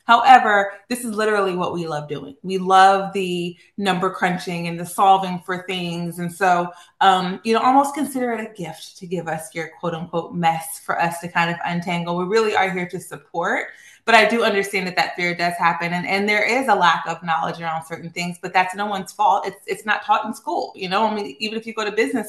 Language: English